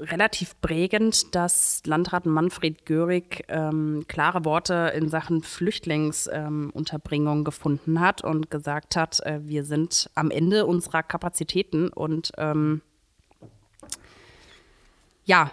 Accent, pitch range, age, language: German, 155-180 Hz, 30-49, German